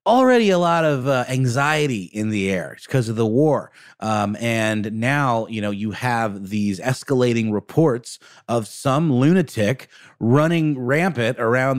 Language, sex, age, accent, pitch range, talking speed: English, male, 30-49, American, 105-150 Hz, 150 wpm